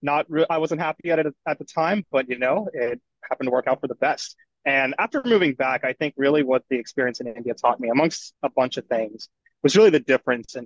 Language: English